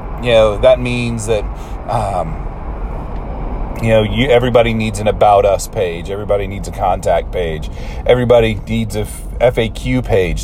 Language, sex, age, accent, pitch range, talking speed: English, male, 40-59, American, 95-120 Hz, 145 wpm